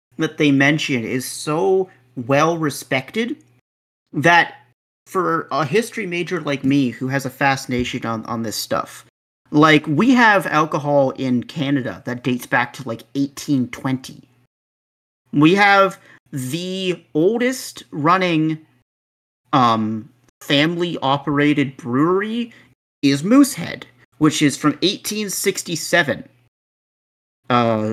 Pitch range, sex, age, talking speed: 125-175 Hz, male, 40-59, 105 wpm